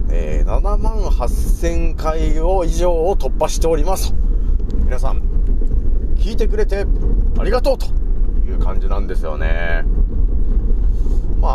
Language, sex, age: Japanese, male, 30-49